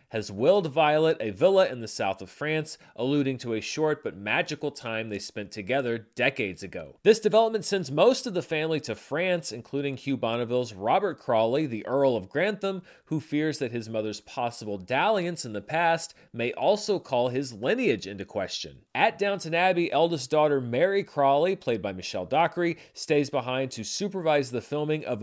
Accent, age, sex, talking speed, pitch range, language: American, 30-49, male, 180 wpm, 115-170 Hz, English